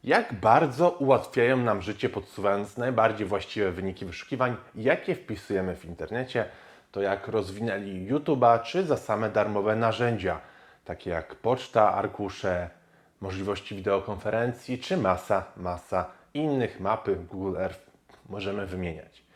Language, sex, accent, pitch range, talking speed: Polish, male, native, 100-130 Hz, 120 wpm